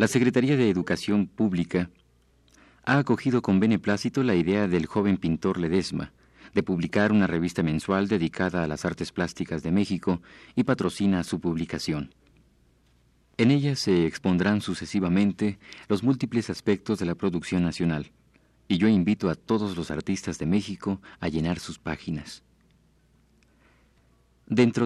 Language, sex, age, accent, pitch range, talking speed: Spanish, male, 40-59, Mexican, 80-105 Hz, 140 wpm